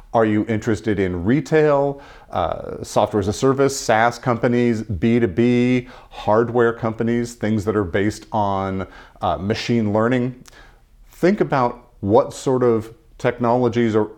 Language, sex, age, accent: English, male, 40-59, American